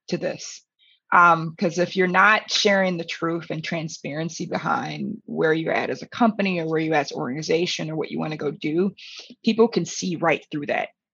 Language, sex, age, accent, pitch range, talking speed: English, female, 20-39, American, 160-190 Hz, 200 wpm